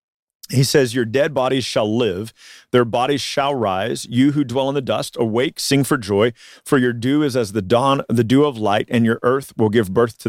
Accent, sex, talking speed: American, male, 225 wpm